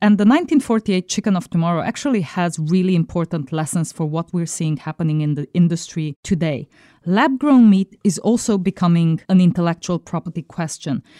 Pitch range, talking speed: 160-205 Hz, 155 wpm